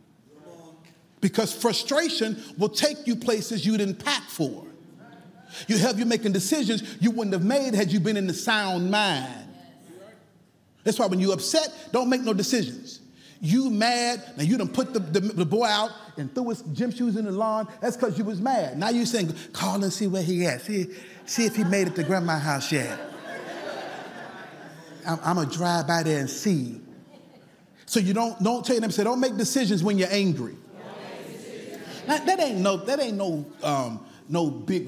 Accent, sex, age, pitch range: American, male, 40-59, 175-230 Hz